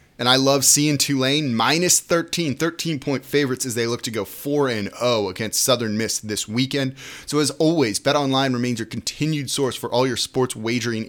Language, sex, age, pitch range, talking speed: English, male, 30-49, 115-140 Hz, 190 wpm